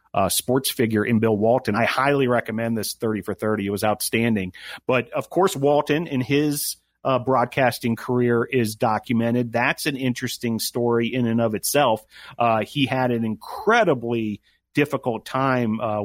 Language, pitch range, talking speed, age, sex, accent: English, 110-130 Hz, 160 wpm, 40-59, male, American